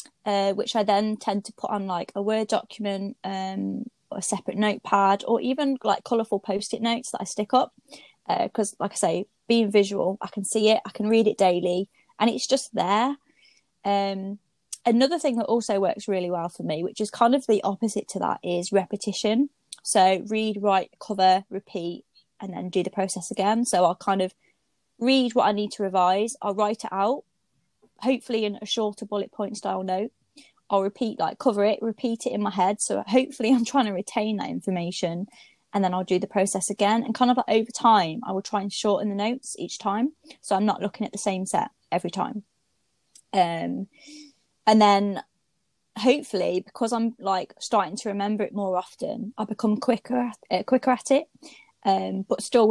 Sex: female